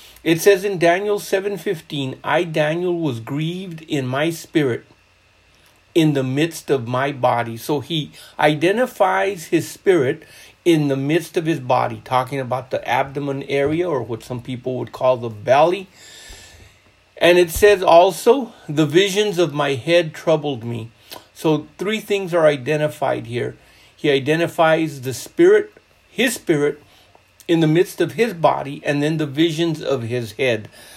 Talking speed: 150 wpm